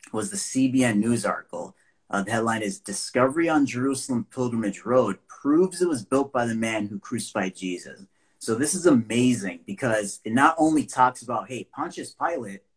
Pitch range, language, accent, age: 100-130 Hz, English, American, 30-49